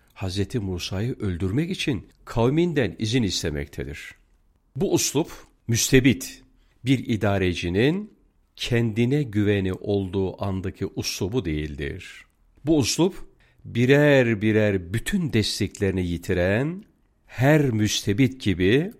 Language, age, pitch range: Turkish, 50-69, 90-130 Hz